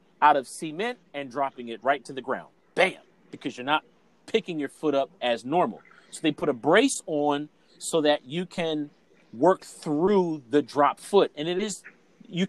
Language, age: English, 40-59